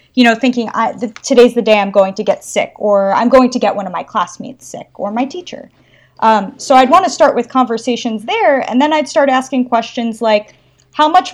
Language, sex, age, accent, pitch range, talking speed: English, female, 30-49, American, 210-250 Hz, 235 wpm